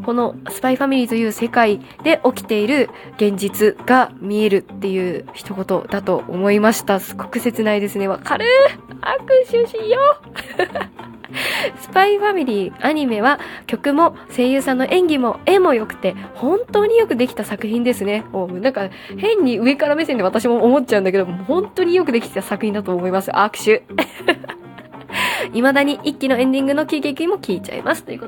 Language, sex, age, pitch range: Japanese, female, 20-39, 205-295 Hz